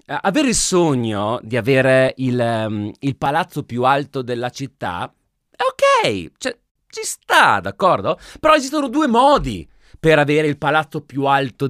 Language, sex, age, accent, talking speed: Italian, male, 30-49, native, 150 wpm